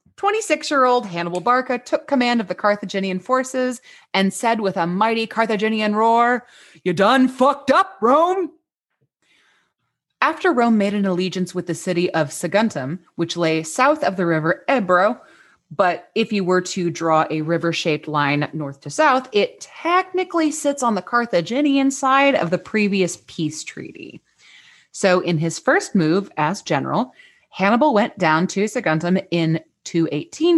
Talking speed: 150 wpm